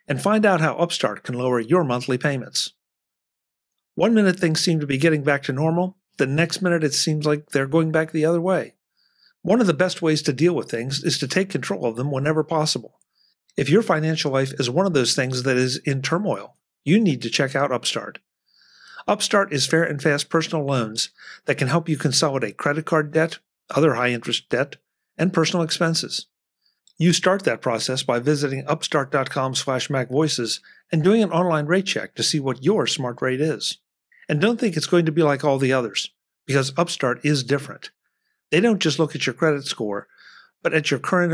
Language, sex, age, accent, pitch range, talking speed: English, male, 50-69, American, 135-170 Hz, 200 wpm